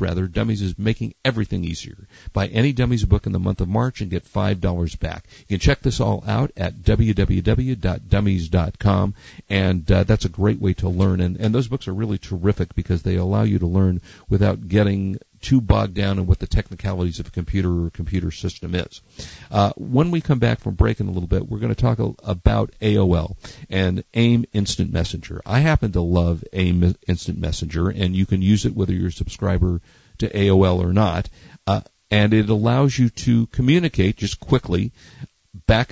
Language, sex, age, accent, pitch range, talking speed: English, male, 50-69, American, 90-110 Hz, 195 wpm